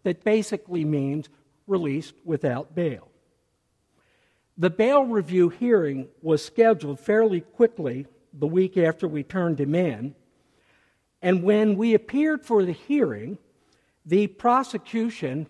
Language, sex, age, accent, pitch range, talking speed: English, male, 60-79, American, 145-205 Hz, 115 wpm